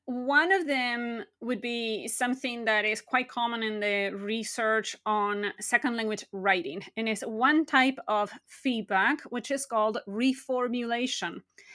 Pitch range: 225-300 Hz